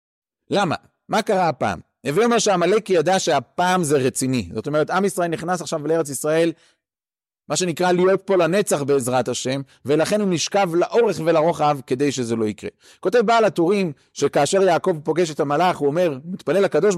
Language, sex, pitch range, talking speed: Hebrew, male, 140-185 Hz, 165 wpm